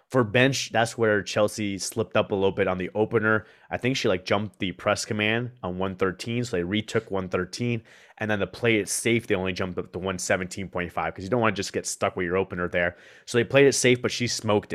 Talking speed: 240 wpm